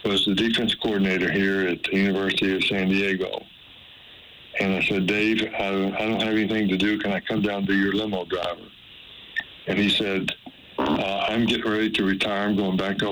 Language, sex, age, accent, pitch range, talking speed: English, male, 60-79, American, 95-110 Hz, 195 wpm